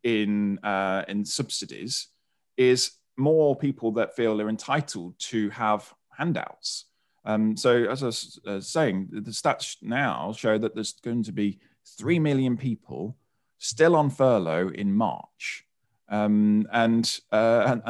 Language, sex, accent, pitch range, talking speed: English, male, British, 105-125 Hz, 135 wpm